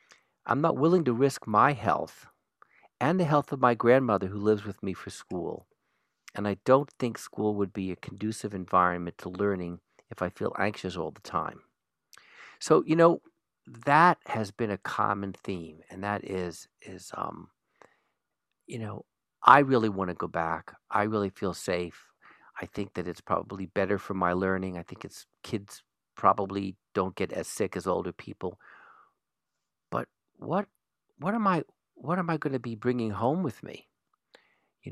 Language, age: English, 50-69